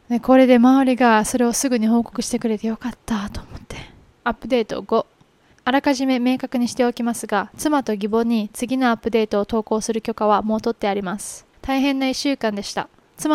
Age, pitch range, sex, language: 20-39, 215-255 Hz, female, Japanese